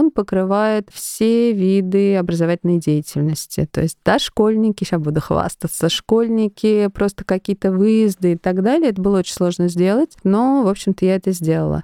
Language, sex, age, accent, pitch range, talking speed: Russian, female, 20-39, native, 165-200 Hz, 150 wpm